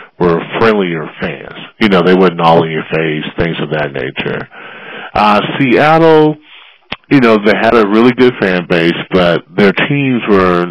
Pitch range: 90-110 Hz